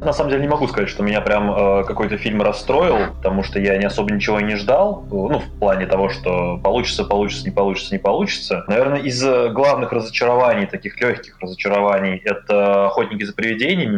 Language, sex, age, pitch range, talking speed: Russian, male, 20-39, 95-105 Hz, 185 wpm